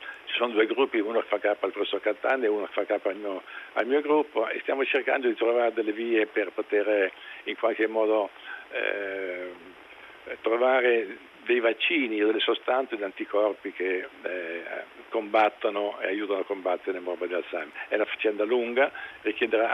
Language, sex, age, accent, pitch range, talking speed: Italian, male, 50-69, native, 105-130 Hz, 165 wpm